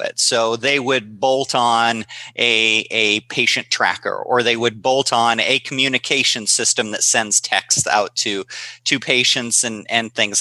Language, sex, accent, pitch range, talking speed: English, male, American, 115-130 Hz, 160 wpm